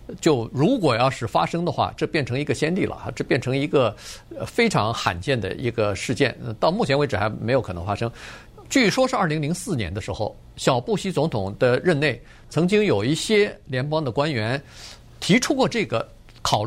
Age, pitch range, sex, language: 50-69, 115-155 Hz, male, Chinese